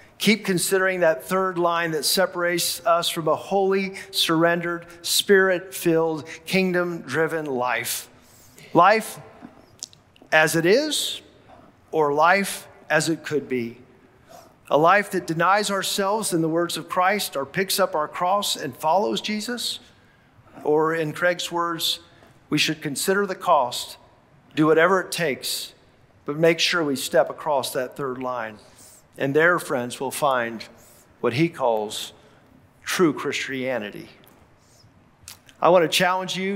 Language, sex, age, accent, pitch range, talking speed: English, male, 50-69, American, 135-185 Hz, 130 wpm